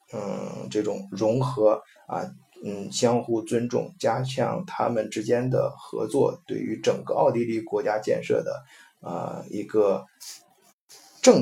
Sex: male